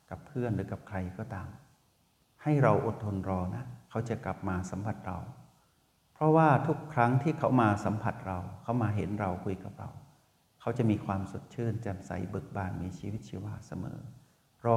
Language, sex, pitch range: Thai, male, 95-125 Hz